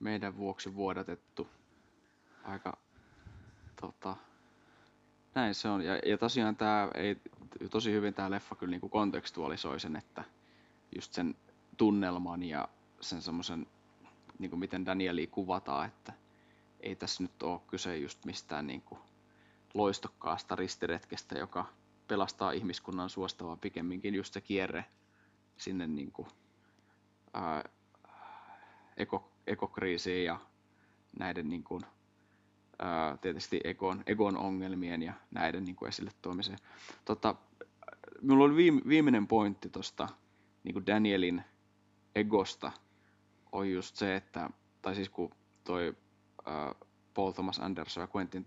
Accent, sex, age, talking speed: native, male, 20-39, 115 wpm